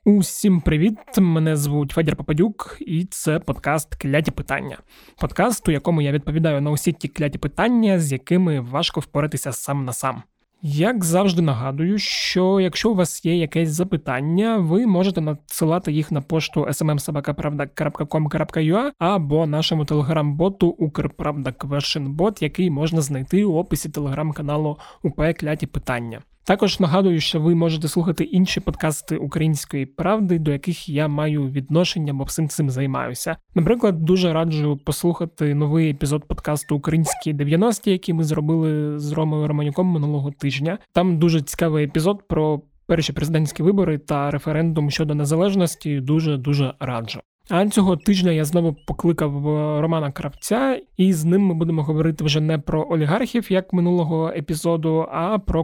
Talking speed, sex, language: 140 wpm, male, Ukrainian